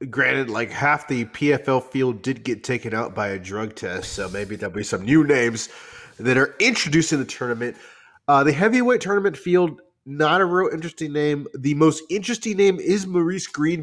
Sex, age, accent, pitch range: male, 30-49, American, 115-160 Hz